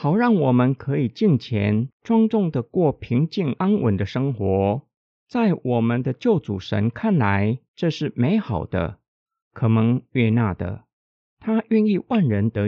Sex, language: male, Chinese